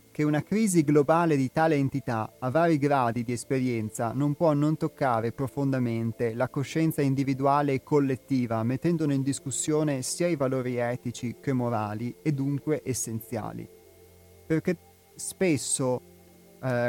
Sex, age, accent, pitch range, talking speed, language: male, 30-49, native, 115-140 Hz, 130 wpm, Italian